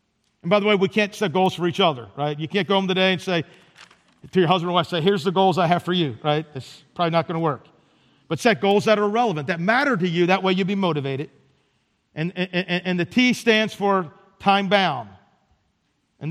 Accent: American